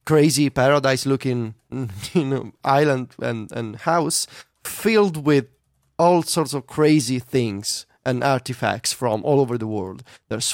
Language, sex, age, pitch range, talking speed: English, male, 20-39, 125-160 Hz, 130 wpm